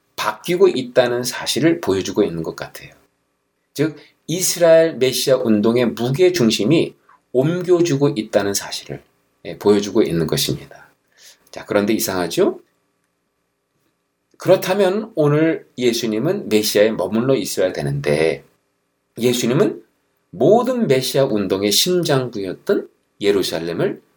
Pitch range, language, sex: 110-160 Hz, Korean, male